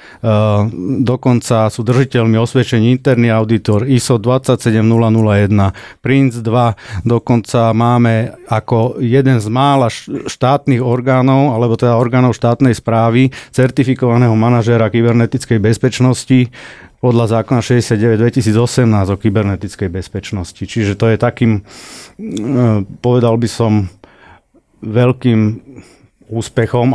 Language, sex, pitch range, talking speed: Slovak, male, 110-125 Hz, 95 wpm